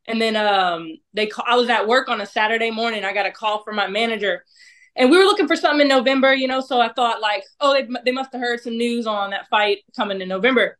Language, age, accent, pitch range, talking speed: English, 20-39, American, 205-250 Hz, 265 wpm